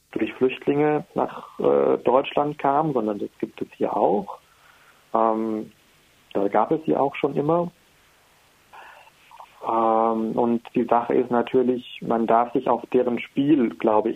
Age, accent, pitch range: 40-59, German, 110-135 Hz